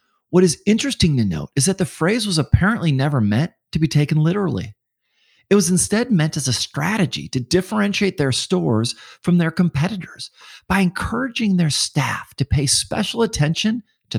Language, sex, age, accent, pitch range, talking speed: English, male, 40-59, American, 115-180 Hz, 170 wpm